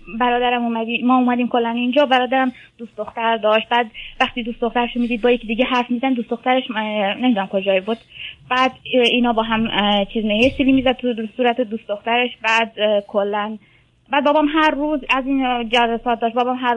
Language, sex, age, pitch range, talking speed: Persian, female, 20-39, 215-245 Hz, 170 wpm